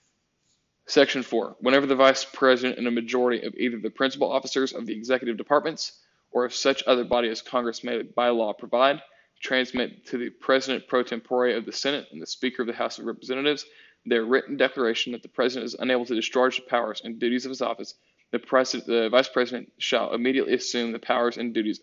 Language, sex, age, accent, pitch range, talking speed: English, male, 10-29, American, 120-135 Hz, 205 wpm